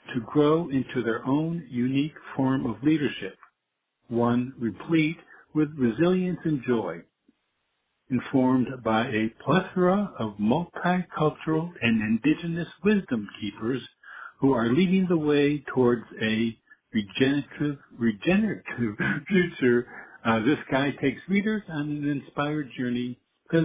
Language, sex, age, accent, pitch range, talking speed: English, male, 60-79, American, 120-170 Hz, 115 wpm